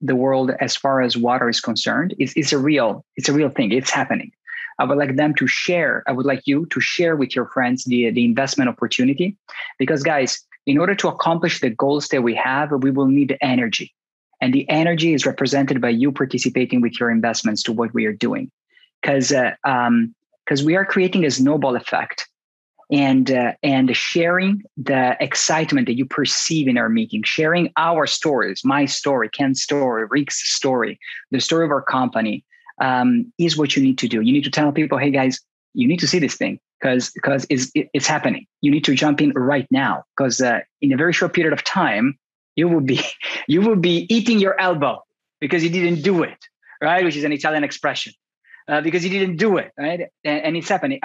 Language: English